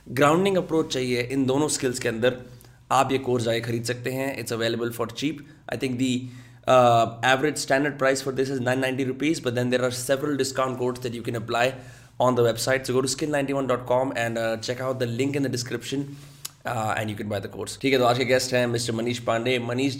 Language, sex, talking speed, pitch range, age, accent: Hindi, male, 205 wpm, 115-135 Hz, 20-39, native